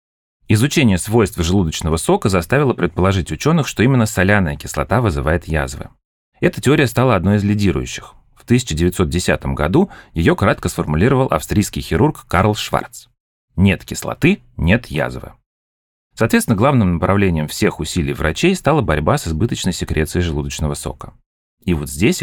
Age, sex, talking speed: 30-49, male, 130 wpm